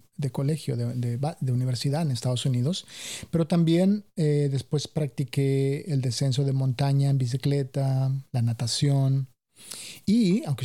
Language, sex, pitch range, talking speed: English, male, 125-150 Hz, 135 wpm